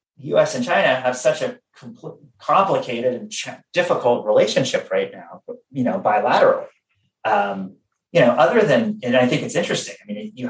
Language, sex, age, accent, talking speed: English, male, 30-49, American, 170 wpm